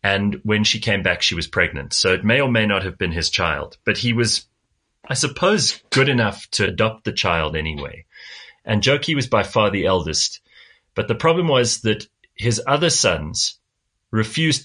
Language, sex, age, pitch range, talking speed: English, male, 30-49, 90-115 Hz, 190 wpm